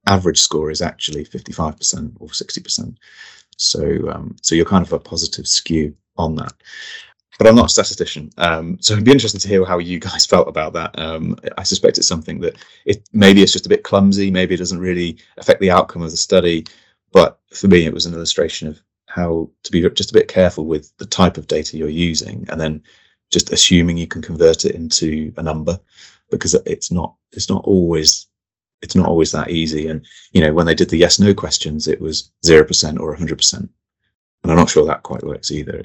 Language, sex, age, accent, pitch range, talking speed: English, male, 30-49, British, 80-95 Hz, 210 wpm